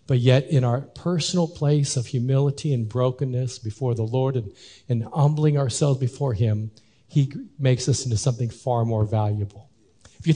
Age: 50-69